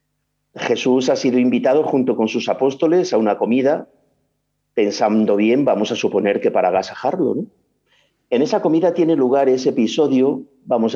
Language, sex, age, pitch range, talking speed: Spanish, male, 50-69, 115-160 Hz, 155 wpm